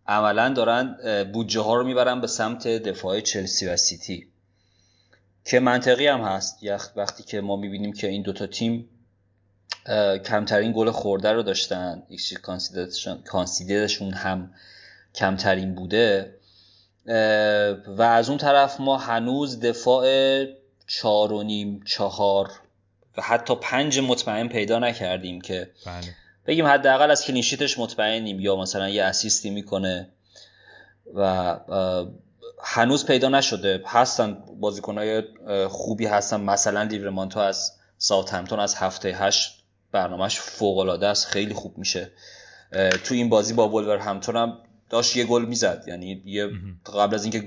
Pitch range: 95-115 Hz